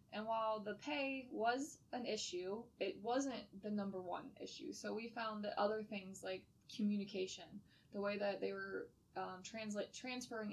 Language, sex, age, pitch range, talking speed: English, female, 20-39, 185-210 Hz, 160 wpm